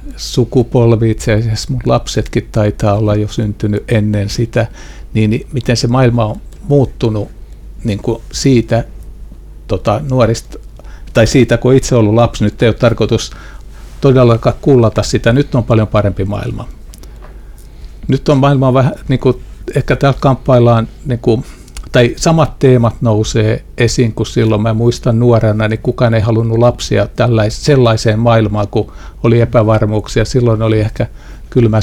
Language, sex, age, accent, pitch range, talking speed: Finnish, male, 60-79, native, 105-125 Hz, 140 wpm